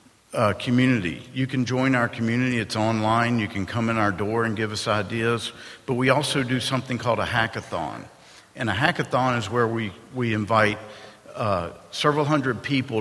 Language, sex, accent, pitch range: English, male, American, 110-130 Hz